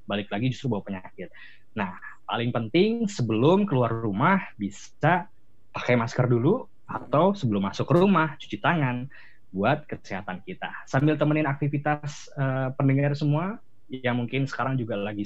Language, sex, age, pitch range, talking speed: Malay, male, 20-39, 110-150 Hz, 140 wpm